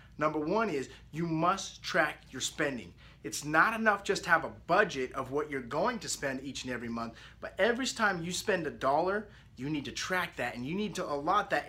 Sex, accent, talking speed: male, American, 225 wpm